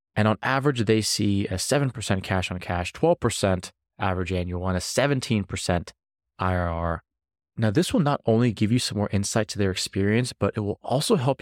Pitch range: 95-115 Hz